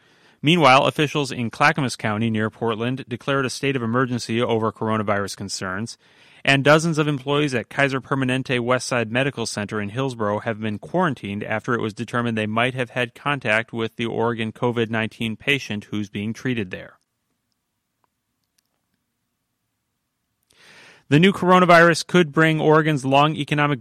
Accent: American